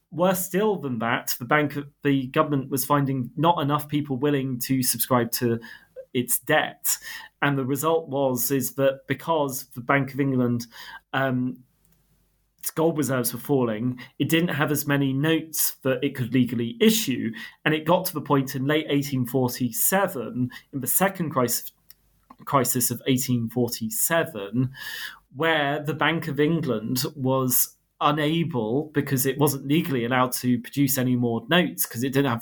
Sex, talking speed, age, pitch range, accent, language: male, 165 wpm, 30-49, 125-150 Hz, British, English